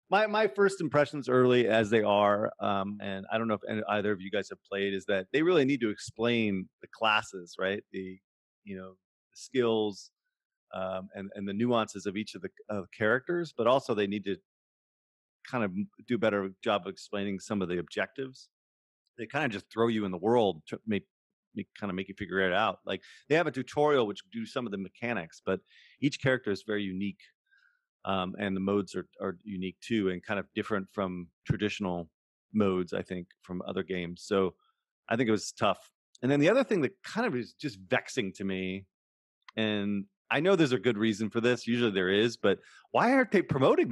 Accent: American